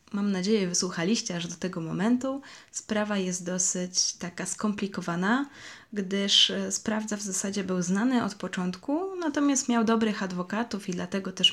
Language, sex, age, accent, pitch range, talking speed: Polish, female, 20-39, native, 185-220 Hz, 140 wpm